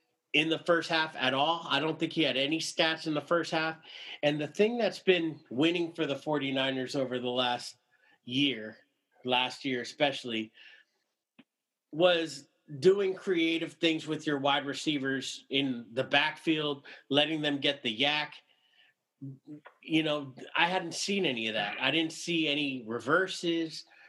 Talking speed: 155 wpm